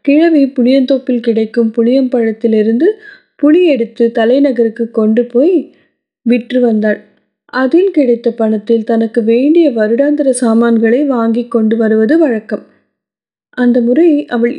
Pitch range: 235-295 Hz